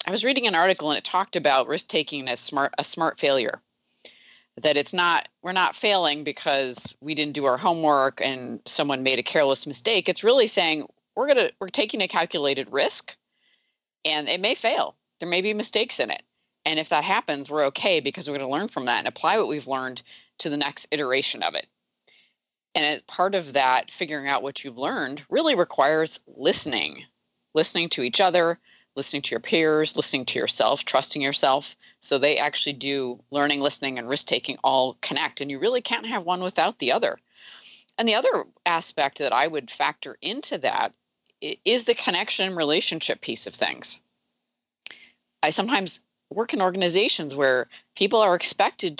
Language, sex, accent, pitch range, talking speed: English, female, American, 140-180 Hz, 185 wpm